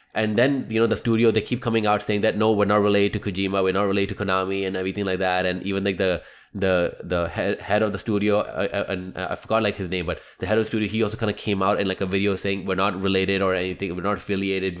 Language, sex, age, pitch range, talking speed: English, male, 20-39, 100-120 Hz, 285 wpm